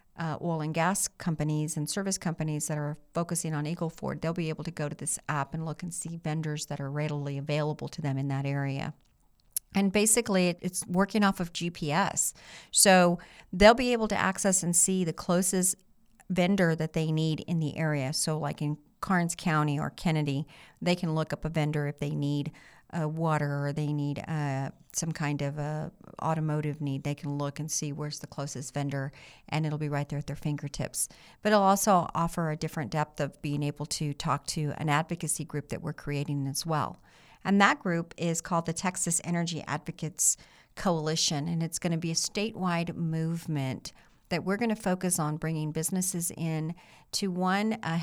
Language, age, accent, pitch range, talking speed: English, 50-69, American, 150-180 Hz, 195 wpm